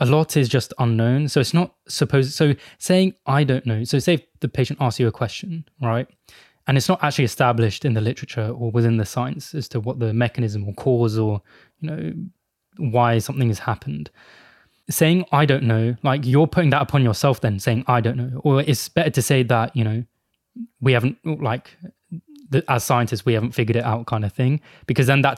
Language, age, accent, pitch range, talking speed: English, 20-39, British, 115-140 Hz, 215 wpm